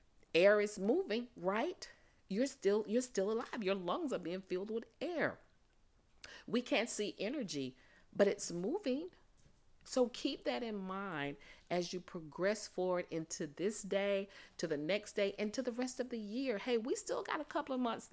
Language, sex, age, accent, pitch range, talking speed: English, female, 40-59, American, 170-245 Hz, 180 wpm